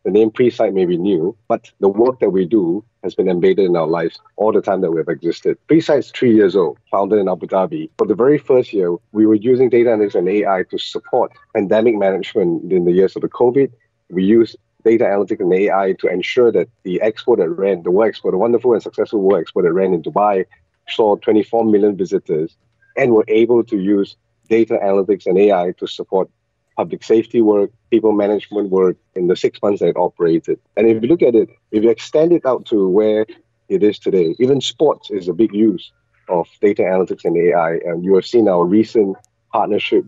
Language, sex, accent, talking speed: English, male, Malaysian, 215 wpm